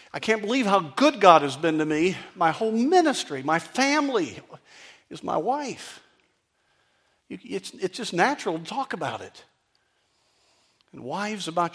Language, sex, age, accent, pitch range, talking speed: English, male, 50-69, American, 110-165 Hz, 155 wpm